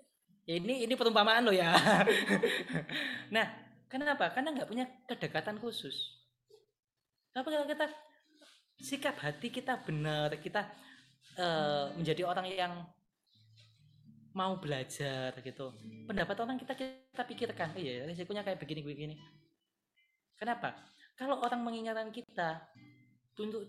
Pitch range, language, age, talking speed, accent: 155-245 Hz, Indonesian, 20-39, 110 wpm, native